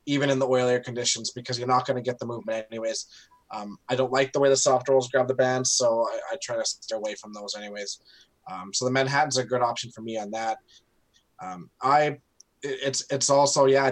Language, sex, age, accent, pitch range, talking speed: English, male, 20-39, American, 120-135 Hz, 225 wpm